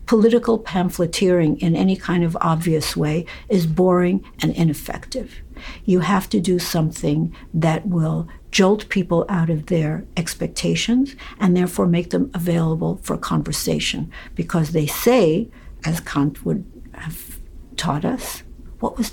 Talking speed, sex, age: 135 wpm, female, 60-79